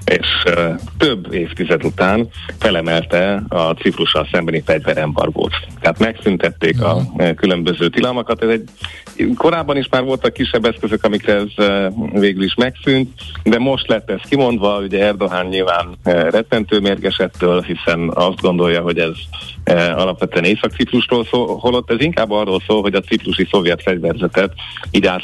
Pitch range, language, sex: 85-110 Hz, Hungarian, male